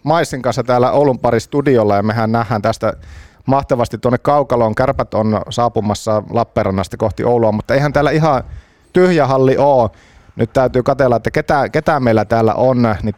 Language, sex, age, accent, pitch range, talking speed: Finnish, male, 30-49, native, 105-130 Hz, 165 wpm